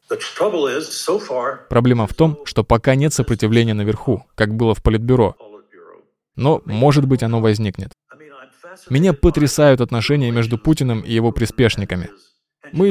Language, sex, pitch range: Russian, male, 115-145 Hz